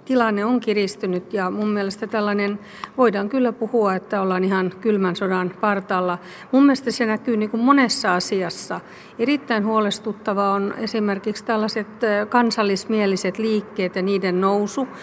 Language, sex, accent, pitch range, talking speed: Finnish, female, native, 190-220 Hz, 135 wpm